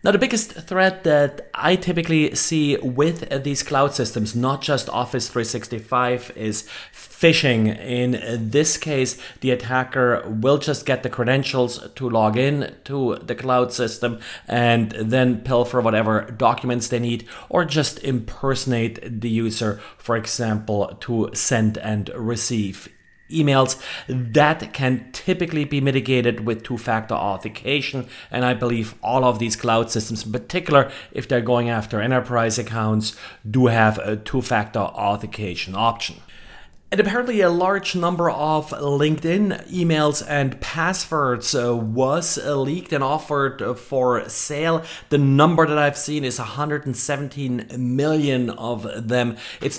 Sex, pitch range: male, 115-145 Hz